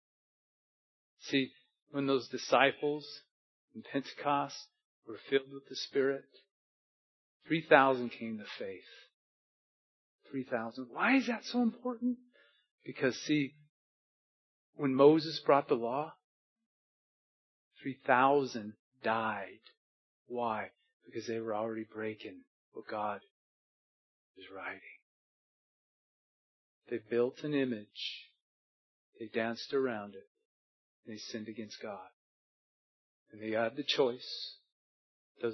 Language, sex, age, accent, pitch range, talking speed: English, male, 40-59, American, 115-145 Hz, 100 wpm